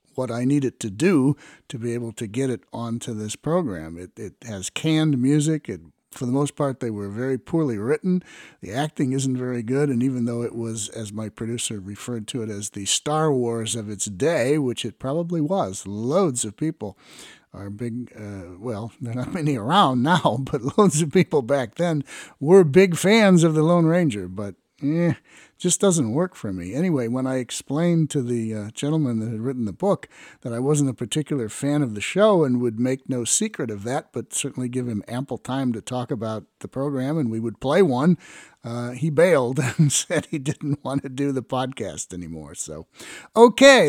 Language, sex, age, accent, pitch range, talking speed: English, male, 50-69, American, 115-155 Hz, 205 wpm